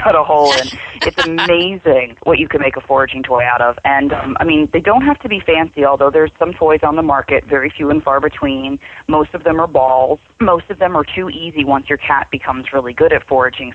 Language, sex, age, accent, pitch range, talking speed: English, female, 30-49, American, 140-165 Hz, 245 wpm